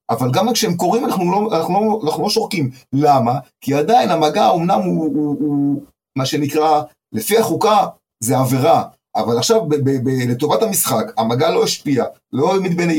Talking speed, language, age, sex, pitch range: 175 wpm, Hebrew, 30-49, male, 125-165 Hz